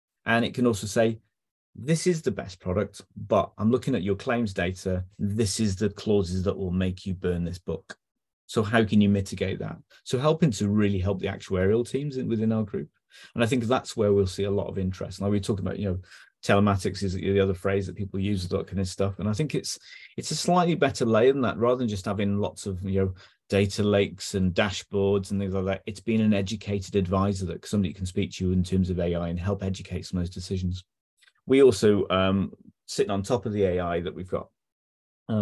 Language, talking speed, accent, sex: English, 230 wpm, British, male